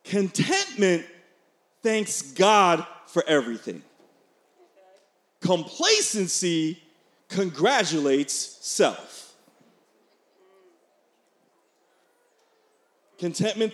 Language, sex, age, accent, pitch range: English, male, 40-59, American, 170-225 Hz